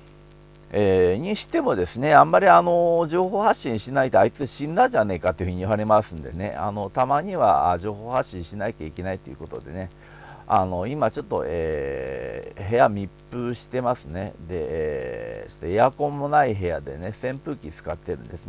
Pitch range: 95-145 Hz